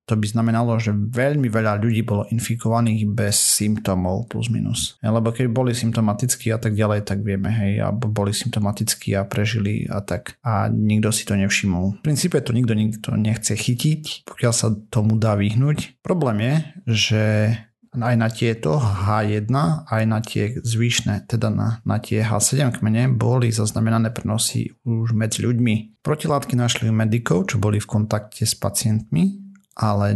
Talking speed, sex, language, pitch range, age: 160 wpm, male, Slovak, 110-120 Hz, 40-59